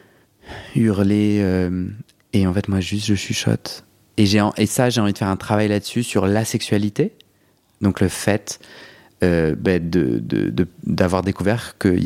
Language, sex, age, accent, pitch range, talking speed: French, male, 30-49, French, 95-105 Hz, 180 wpm